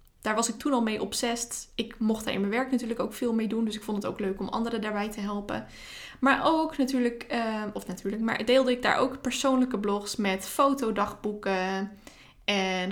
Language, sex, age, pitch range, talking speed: Dutch, female, 20-39, 210-255 Hz, 210 wpm